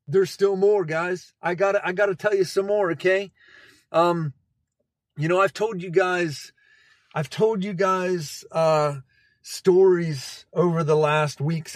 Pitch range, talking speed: 140-155 Hz, 160 wpm